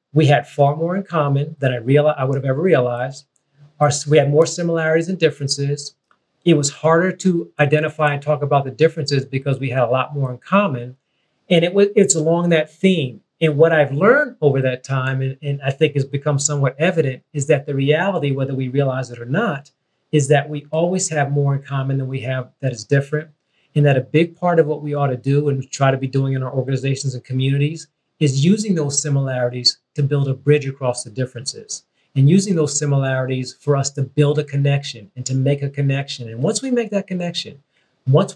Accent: American